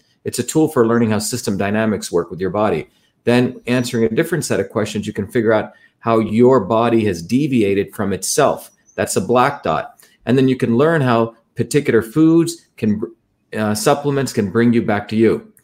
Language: English